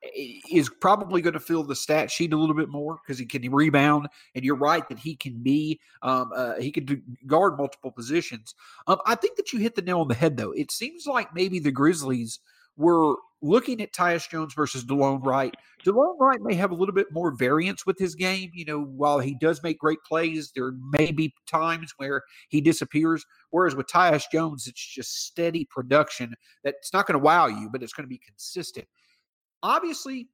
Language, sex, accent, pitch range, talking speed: English, male, American, 135-190 Hz, 205 wpm